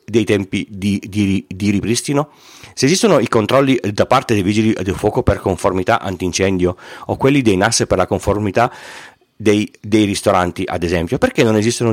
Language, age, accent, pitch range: Italian, 40-59, native, 100-125 Hz